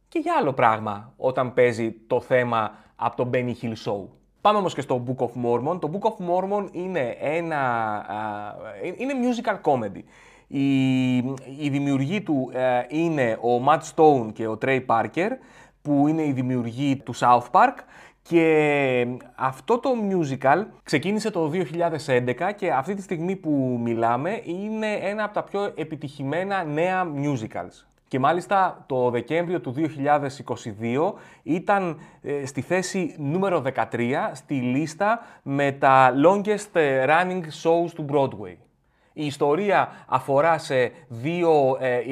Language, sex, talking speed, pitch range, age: Greek, male, 140 wpm, 130-170 Hz, 20-39